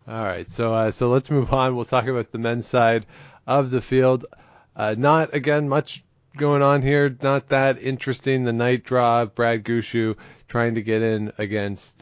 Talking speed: 190 wpm